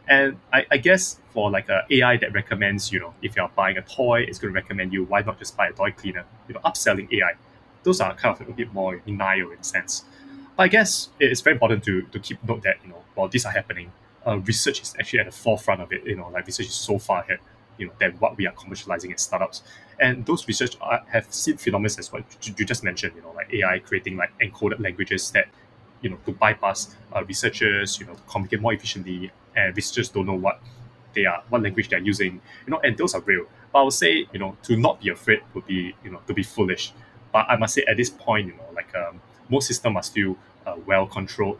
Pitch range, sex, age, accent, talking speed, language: 95-120 Hz, male, 20-39, Malaysian, 255 wpm, English